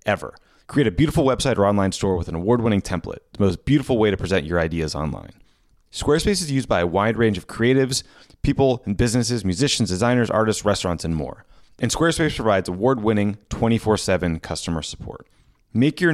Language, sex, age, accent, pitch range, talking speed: English, male, 30-49, American, 95-125 Hz, 190 wpm